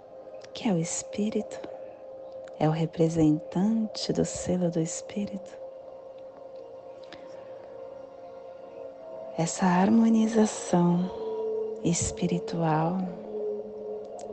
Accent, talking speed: Brazilian, 60 wpm